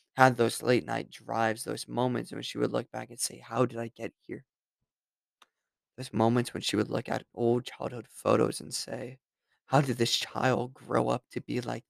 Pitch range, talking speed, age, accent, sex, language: 110-125 Hz, 200 wpm, 20-39, American, male, English